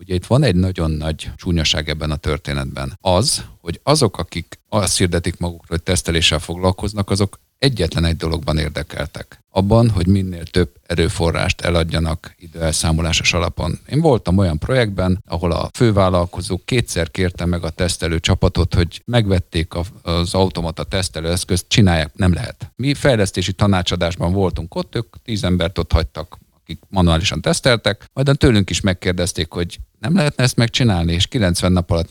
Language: Hungarian